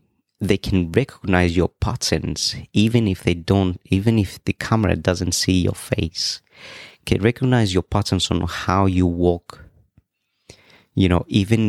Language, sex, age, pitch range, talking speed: English, male, 30-49, 90-110 Hz, 145 wpm